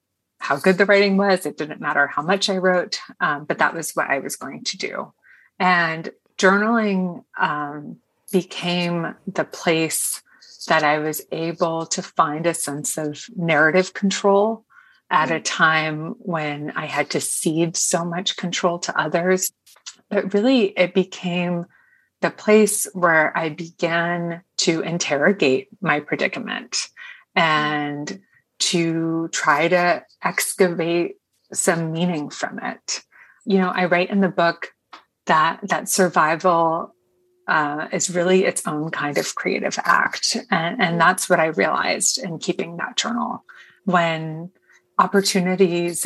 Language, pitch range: English, 165-190 Hz